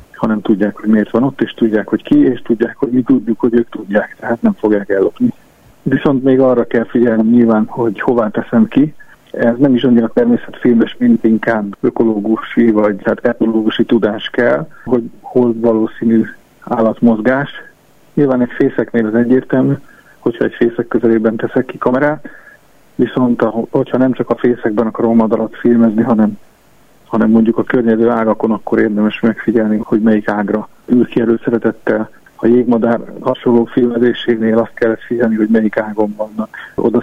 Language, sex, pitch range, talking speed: Hungarian, male, 110-125 Hz, 160 wpm